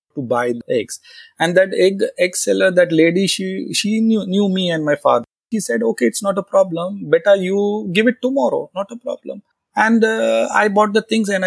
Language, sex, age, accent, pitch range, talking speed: Hindi, male, 30-49, native, 130-200 Hz, 215 wpm